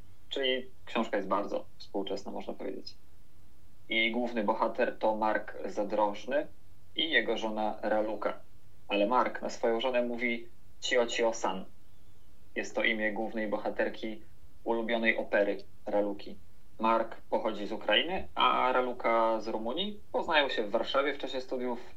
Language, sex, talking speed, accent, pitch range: Polish, male, 130 wpm, native, 100-115 Hz